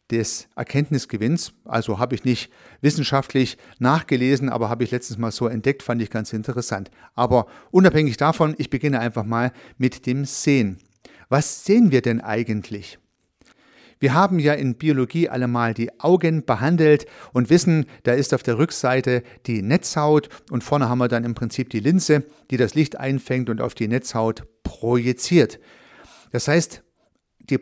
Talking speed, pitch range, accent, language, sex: 160 wpm, 120-150 Hz, German, German, male